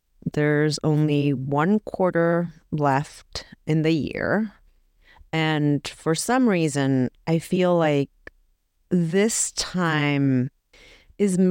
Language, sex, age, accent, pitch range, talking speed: English, female, 30-49, American, 145-195 Hz, 95 wpm